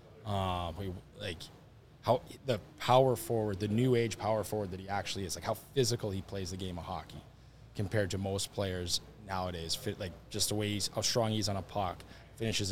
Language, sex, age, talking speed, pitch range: English, male, 20-39, 195 wpm, 90-115 Hz